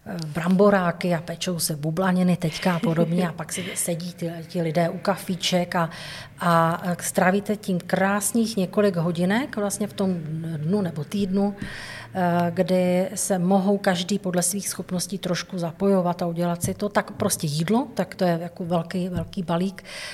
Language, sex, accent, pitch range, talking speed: Czech, female, native, 170-190 Hz, 155 wpm